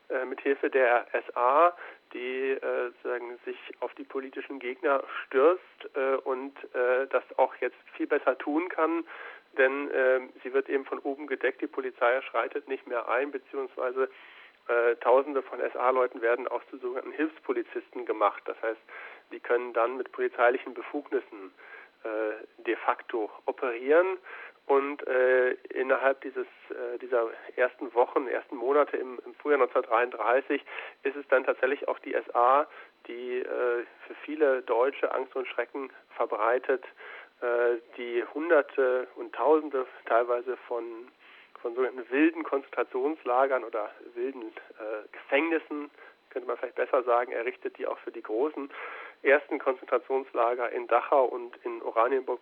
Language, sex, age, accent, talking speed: German, male, 40-59, German, 140 wpm